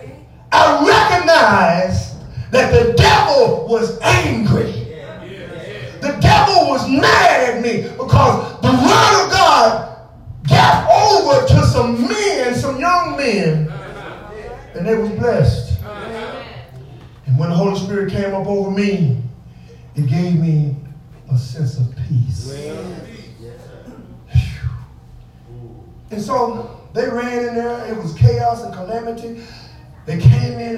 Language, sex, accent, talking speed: English, male, American, 115 wpm